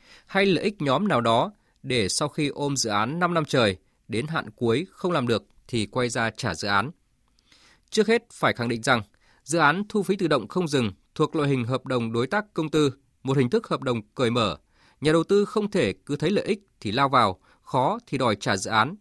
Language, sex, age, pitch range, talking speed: Vietnamese, male, 20-39, 115-170 Hz, 235 wpm